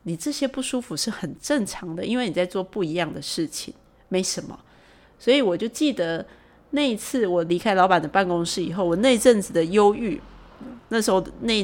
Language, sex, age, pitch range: Chinese, female, 30-49, 170-215 Hz